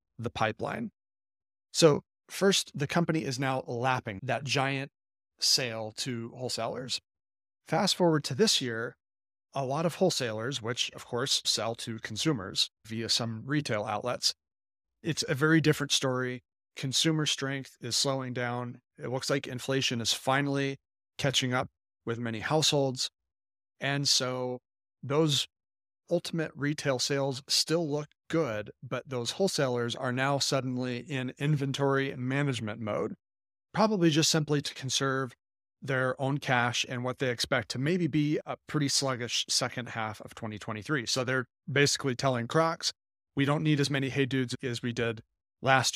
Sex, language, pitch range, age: male, English, 115-140 Hz, 30-49